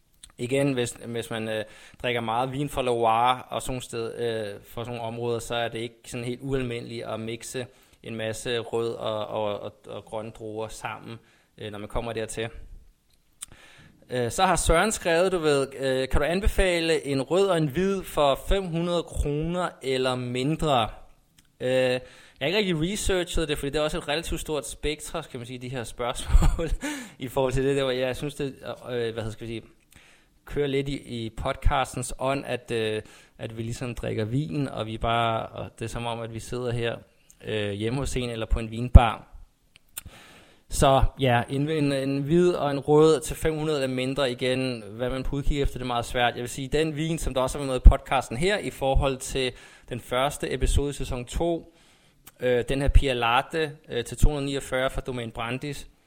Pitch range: 115-140 Hz